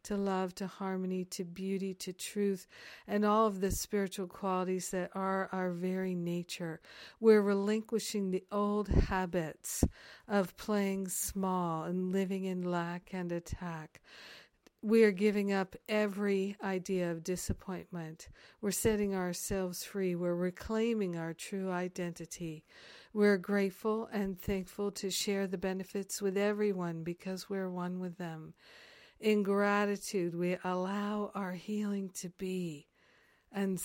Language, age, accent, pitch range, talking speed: English, 50-69, American, 180-200 Hz, 130 wpm